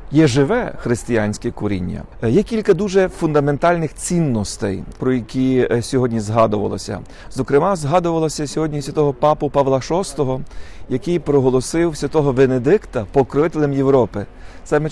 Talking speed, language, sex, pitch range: 110 wpm, Ukrainian, male, 120-150 Hz